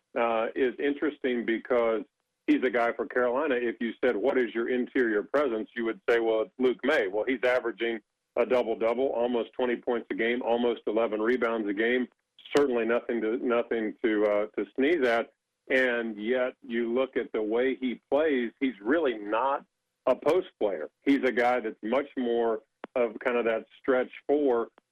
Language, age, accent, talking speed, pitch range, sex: English, 50-69, American, 175 wpm, 115-130 Hz, male